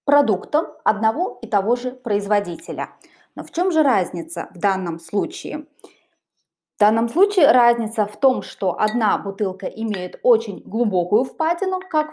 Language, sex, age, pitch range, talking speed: Russian, female, 20-39, 205-285 Hz, 140 wpm